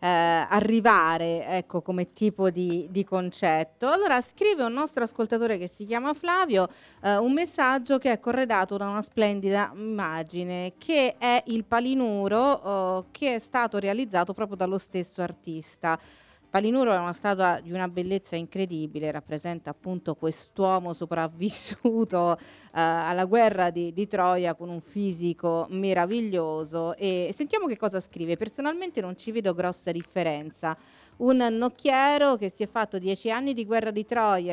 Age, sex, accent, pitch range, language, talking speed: 40-59, female, native, 175-225 Hz, Italian, 140 wpm